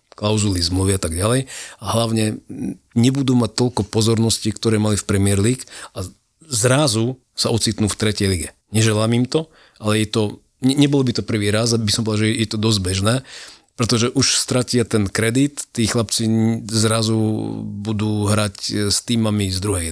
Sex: male